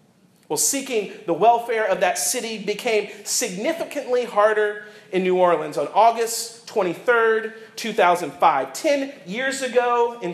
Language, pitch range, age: English, 175-235 Hz, 40-59